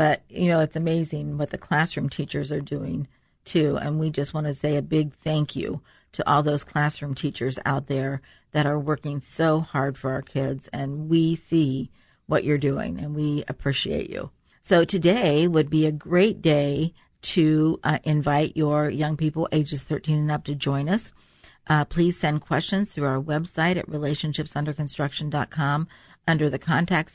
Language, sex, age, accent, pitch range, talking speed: English, female, 50-69, American, 145-165 Hz, 175 wpm